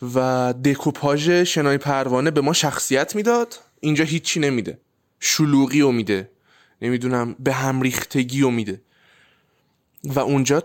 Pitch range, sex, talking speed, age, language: 130-165 Hz, male, 120 wpm, 20-39, Persian